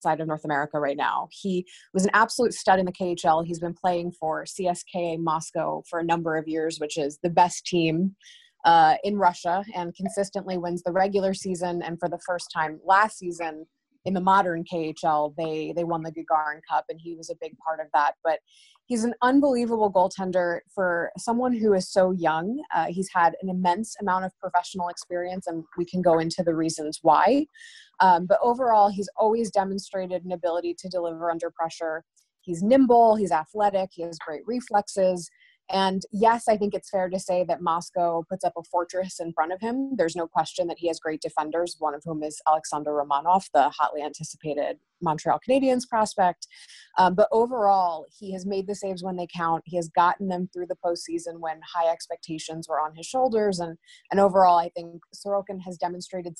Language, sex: English, female